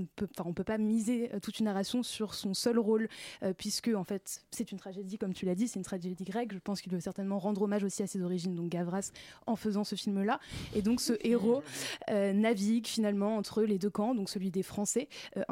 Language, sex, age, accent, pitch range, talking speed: French, female, 20-39, French, 200-230 Hz, 230 wpm